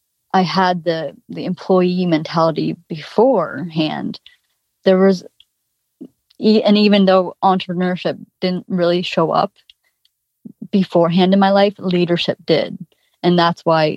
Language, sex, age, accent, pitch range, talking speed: English, female, 30-49, American, 165-190 Hz, 110 wpm